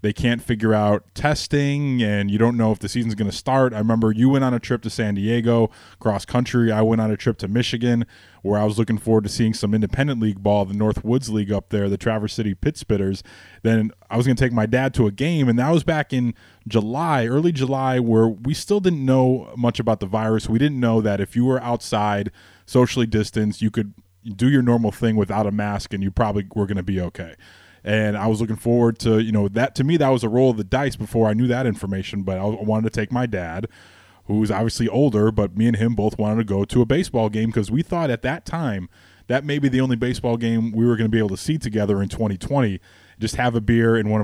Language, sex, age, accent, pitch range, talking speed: English, male, 20-39, American, 100-120 Hz, 250 wpm